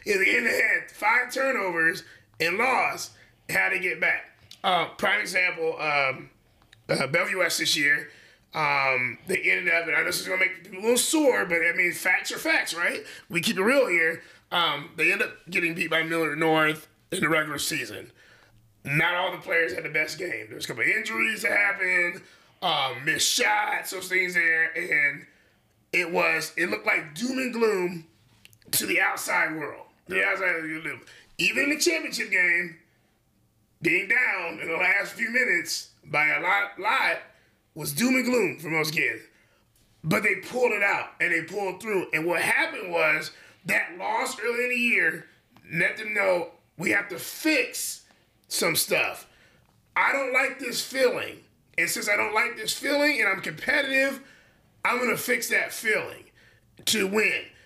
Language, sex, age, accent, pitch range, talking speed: English, male, 20-39, American, 160-250 Hz, 180 wpm